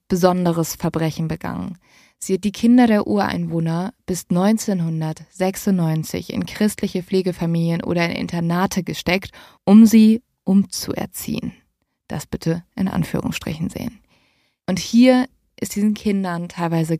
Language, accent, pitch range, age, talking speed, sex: German, German, 175-225 Hz, 20-39, 115 wpm, female